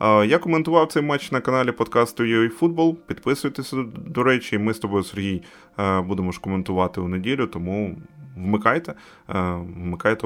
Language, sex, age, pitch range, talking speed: Ukrainian, male, 20-39, 100-125 Hz, 140 wpm